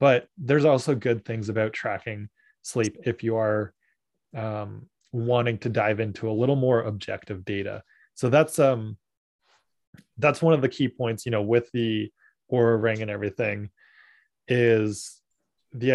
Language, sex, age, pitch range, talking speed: English, male, 20-39, 110-130 Hz, 150 wpm